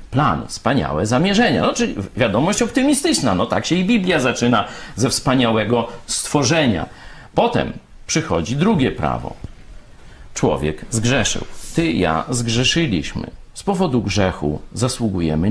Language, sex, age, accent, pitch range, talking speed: Polish, male, 50-69, native, 105-175 Hz, 110 wpm